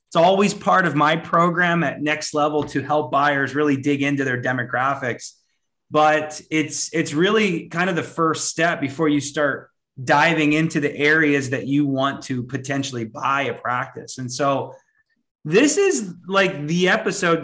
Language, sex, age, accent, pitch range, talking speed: English, male, 30-49, American, 145-170 Hz, 165 wpm